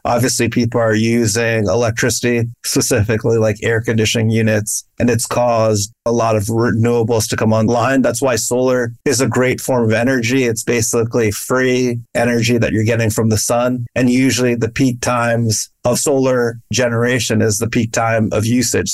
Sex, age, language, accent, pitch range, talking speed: male, 30-49, English, American, 115-125 Hz, 170 wpm